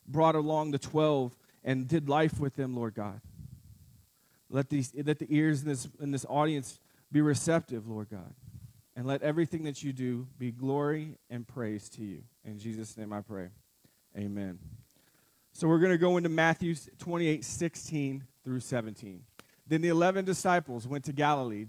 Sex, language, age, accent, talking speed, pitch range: male, English, 30-49, American, 170 wpm, 125-165 Hz